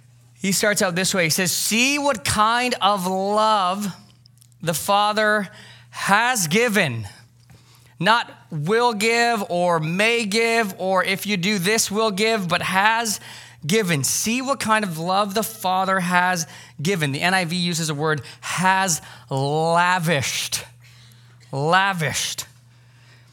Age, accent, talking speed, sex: 20-39, American, 125 wpm, male